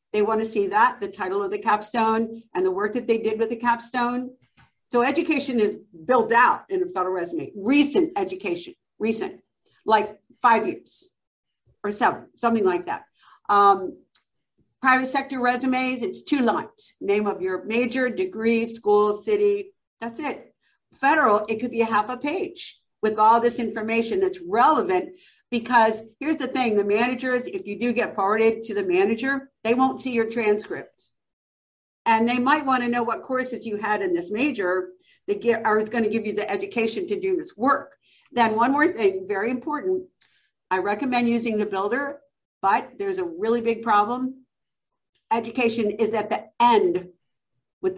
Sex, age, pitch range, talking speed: female, 50-69, 210-280 Hz, 165 wpm